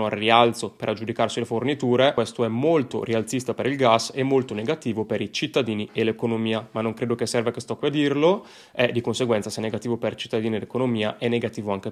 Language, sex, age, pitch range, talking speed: Italian, male, 20-39, 115-125 Hz, 230 wpm